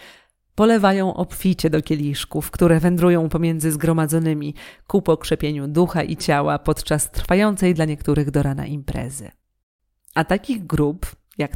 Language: Polish